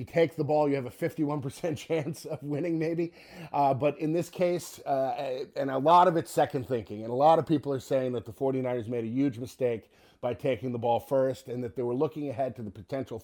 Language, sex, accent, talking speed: English, male, American, 240 wpm